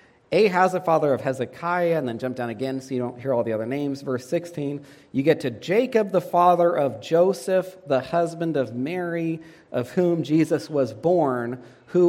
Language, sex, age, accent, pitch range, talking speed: English, male, 40-59, American, 130-165 Hz, 190 wpm